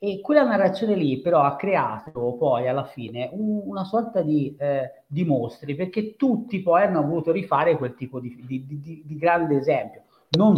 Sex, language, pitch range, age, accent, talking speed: male, Italian, 145-185 Hz, 40-59, native, 180 wpm